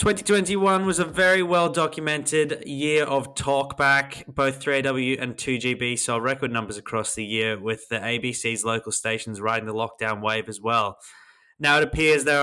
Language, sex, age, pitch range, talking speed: English, male, 20-39, 110-140 Hz, 160 wpm